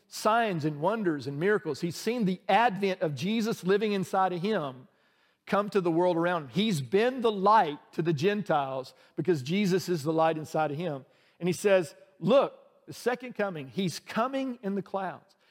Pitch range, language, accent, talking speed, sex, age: 165-215 Hz, English, American, 185 wpm, male, 50-69